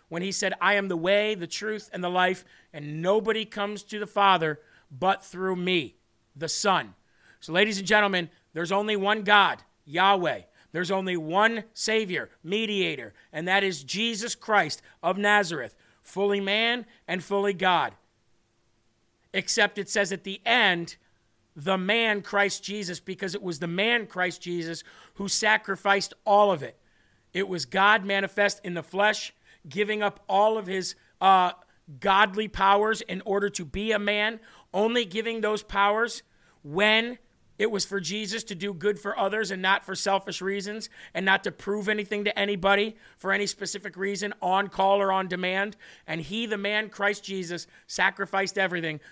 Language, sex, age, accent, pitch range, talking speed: English, male, 40-59, American, 175-205 Hz, 165 wpm